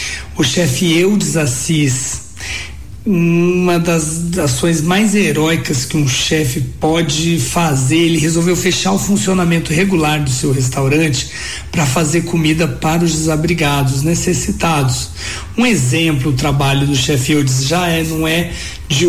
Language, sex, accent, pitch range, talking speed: Portuguese, male, Brazilian, 135-170 Hz, 130 wpm